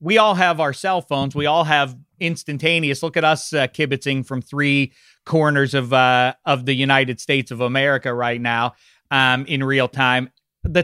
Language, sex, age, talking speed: English, male, 40-59, 185 wpm